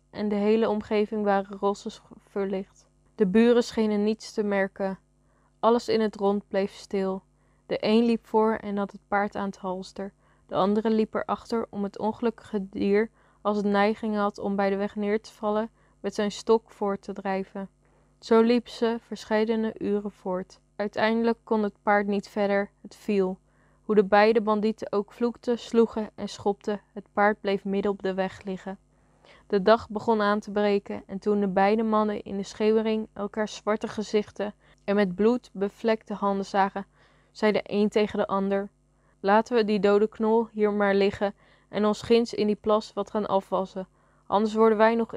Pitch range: 200-220 Hz